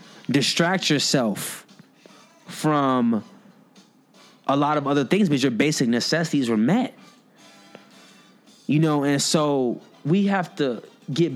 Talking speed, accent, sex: 115 wpm, American, male